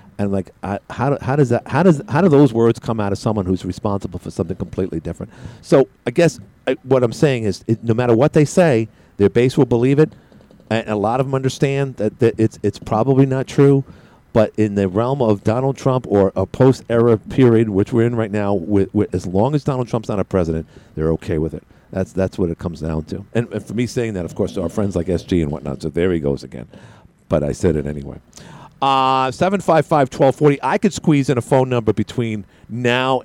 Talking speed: 230 wpm